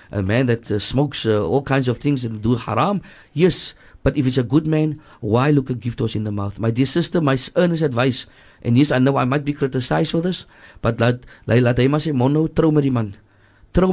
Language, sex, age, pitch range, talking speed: English, male, 50-69, 120-160 Hz, 235 wpm